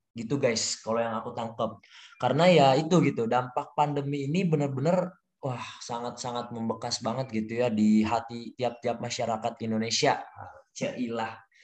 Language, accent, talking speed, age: Indonesian, native, 135 wpm, 20-39